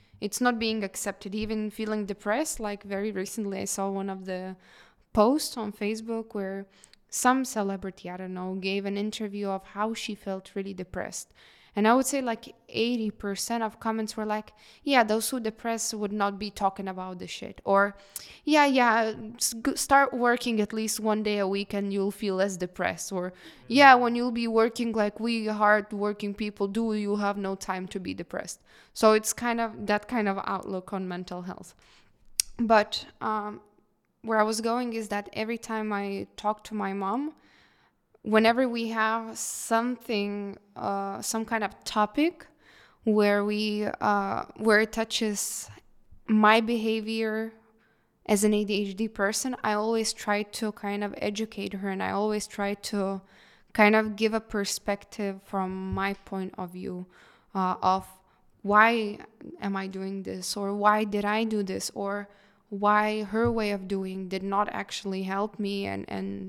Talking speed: 165 wpm